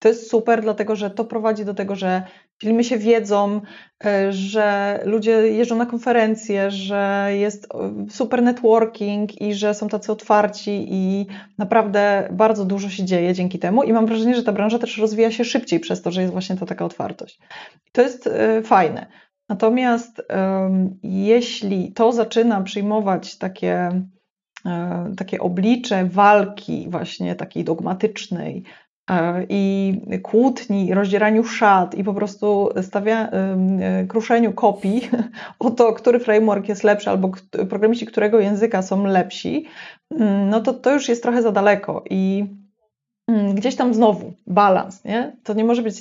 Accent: native